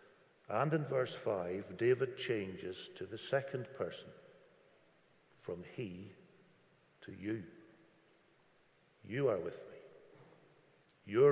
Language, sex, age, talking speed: English, male, 60-79, 100 wpm